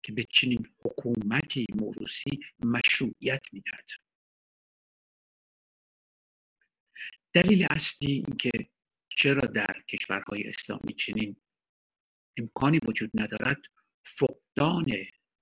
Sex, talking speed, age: male, 80 wpm, 60-79